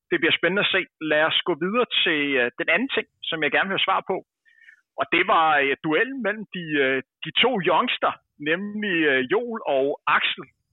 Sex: male